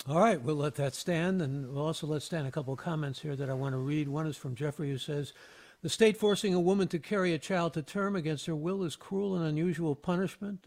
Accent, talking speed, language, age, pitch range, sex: American, 260 wpm, English, 60-79, 155-190 Hz, male